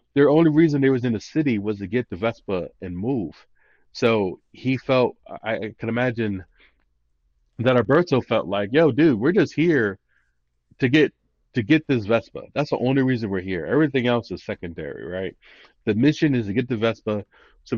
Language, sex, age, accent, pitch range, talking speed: English, male, 30-49, American, 95-125 Hz, 185 wpm